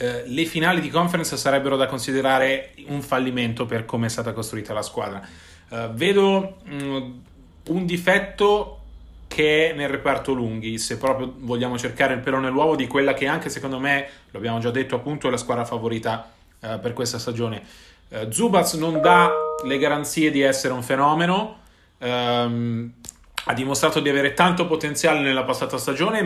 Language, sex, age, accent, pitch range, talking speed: Italian, male, 30-49, native, 125-165 Hz, 165 wpm